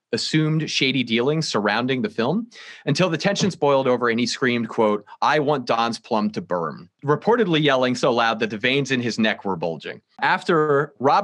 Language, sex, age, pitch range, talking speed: English, male, 30-49, 105-140 Hz, 185 wpm